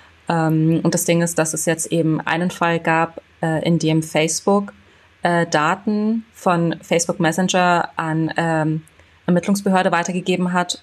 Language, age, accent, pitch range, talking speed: German, 20-39, German, 160-180 Hz, 120 wpm